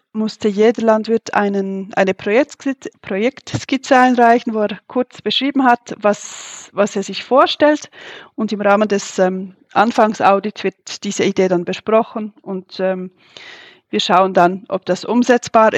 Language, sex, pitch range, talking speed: German, female, 200-235 Hz, 135 wpm